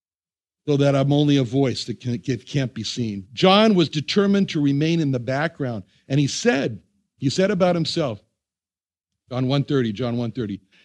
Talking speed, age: 165 wpm, 60-79